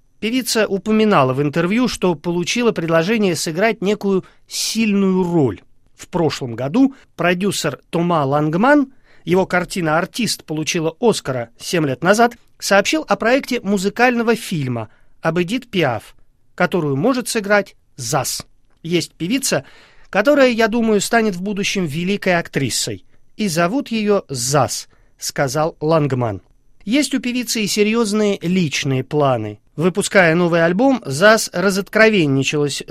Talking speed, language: 120 wpm, Russian